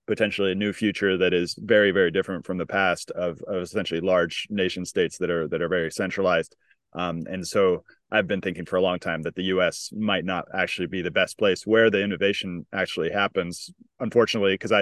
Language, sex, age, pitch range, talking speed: English, male, 20-39, 95-115 Hz, 205 wpm